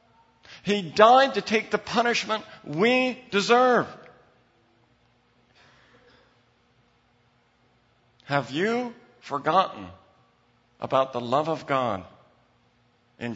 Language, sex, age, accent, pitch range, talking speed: English, male, 50-69, American, 125-205 Hz, 75 wpm